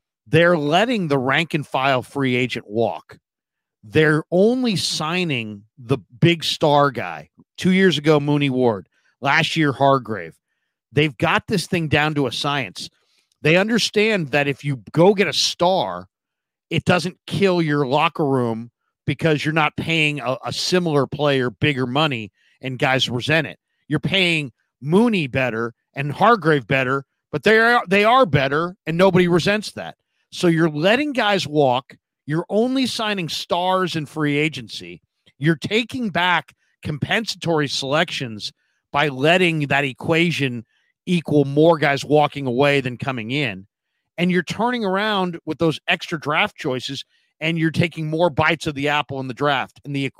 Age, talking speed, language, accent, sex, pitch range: 50-69, 150 wpm, English, American, male, 135-175 Hz